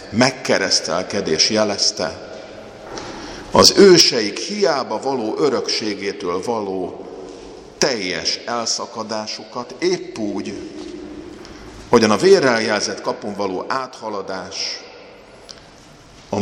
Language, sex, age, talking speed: Hungarian, male, 50-69, 70 wpm